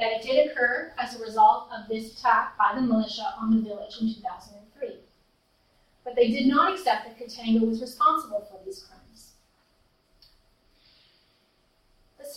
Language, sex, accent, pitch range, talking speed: English, female, American, 225-305 Hz, 150 wpm